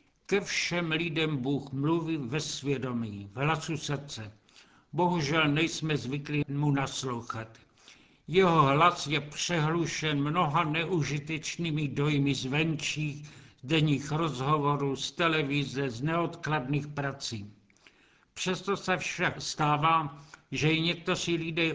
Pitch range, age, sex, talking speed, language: 140-160 Hz, 70-89, male, 105 wpm, Czech